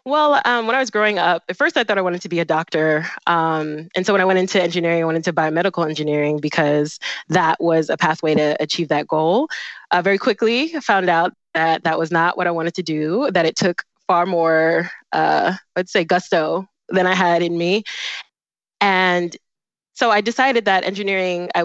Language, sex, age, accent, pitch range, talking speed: English, female, 20-39, American, 155-185 Hz, 210 wpm